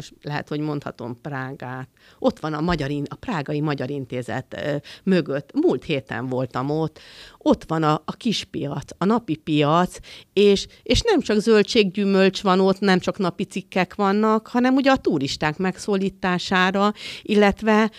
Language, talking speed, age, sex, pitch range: Hungarian, 145 wpm, 50-69, female, 150-210 Hz